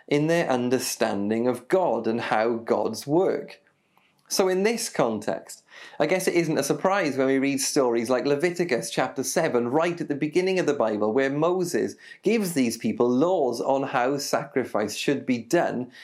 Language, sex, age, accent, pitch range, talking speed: English, male, 30-49, British, 130-185 Hz, 170 wpm